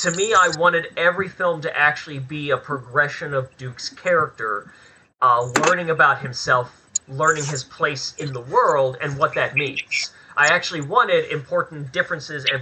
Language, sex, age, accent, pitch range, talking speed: English, male, 30-49, American, 140-180 Hz, 160 wpm